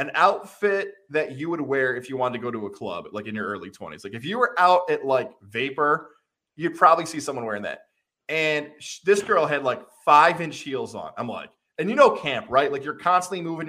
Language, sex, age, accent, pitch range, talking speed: English, male, 20-39, American, 140-230 Hz, 230 wpm